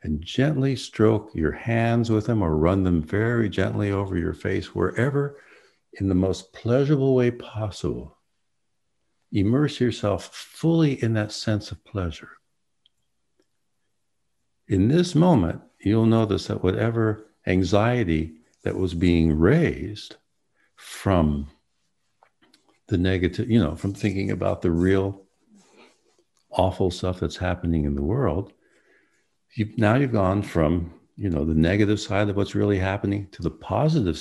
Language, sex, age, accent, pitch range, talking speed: English, male, 60-79, American, 85-115 Hz, 130 wpm